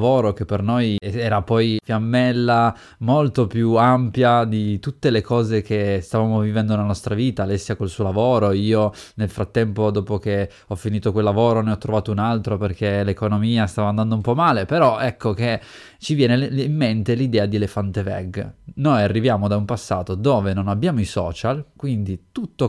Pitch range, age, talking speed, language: 105-125 Hz, 20-39, 175 wpm, Italian